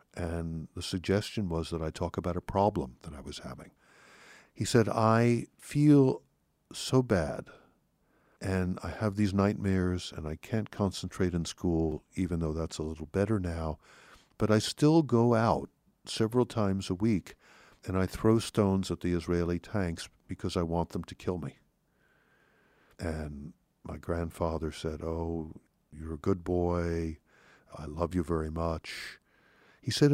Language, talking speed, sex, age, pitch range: English, 155 wpm, male, 50-69, 85-115 Hz